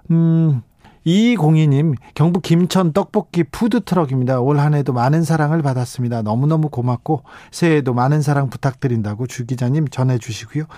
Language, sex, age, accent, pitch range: Korean, male, 40-59, native, 125-160 Hz